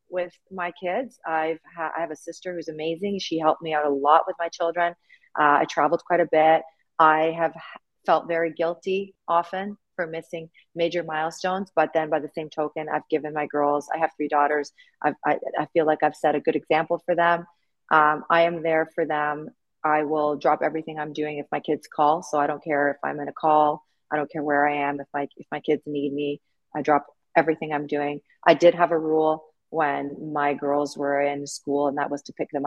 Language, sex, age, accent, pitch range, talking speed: English, female, 40-59, American, 145-175 Hz, 225 wpm